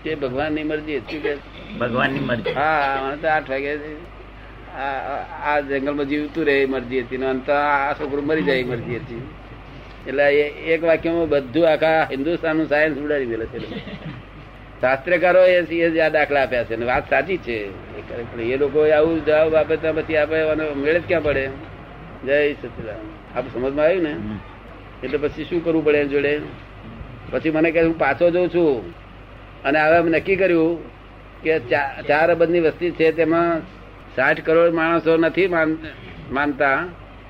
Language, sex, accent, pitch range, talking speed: Gujarati, male, native, 120-160 Hz, 75 wpm